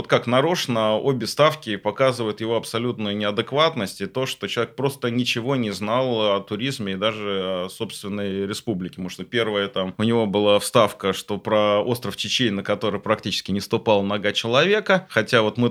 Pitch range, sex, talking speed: 100-130 Hz, male, 175 wpm